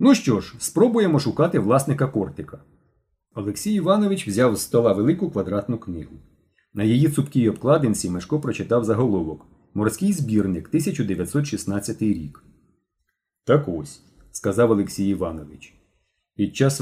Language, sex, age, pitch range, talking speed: Ukrainian, male, 30-49, 95-130 Hz, 120 wpm